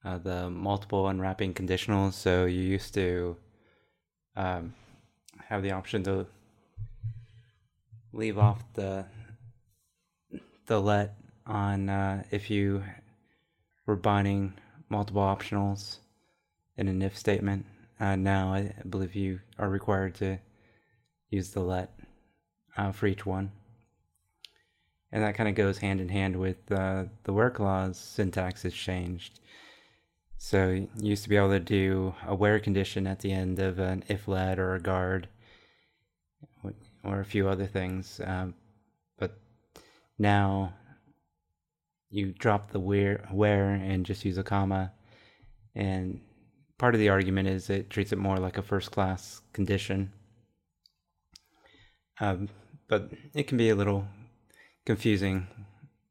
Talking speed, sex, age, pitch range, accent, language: 130 wpm, male, 20-39, 95-105 Hz, American, English